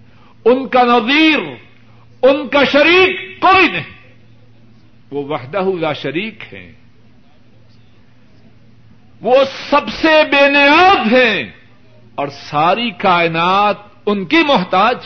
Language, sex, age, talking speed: Urdu, male, 60-79, 100 wpm